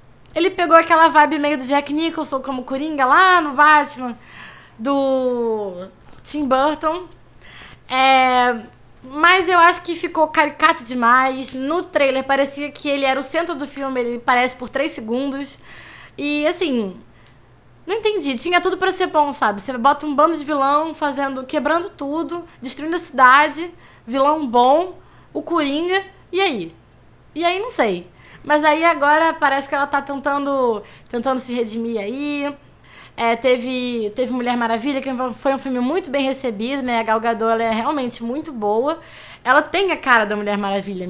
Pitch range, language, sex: 230-305 Hz, Portuguese, female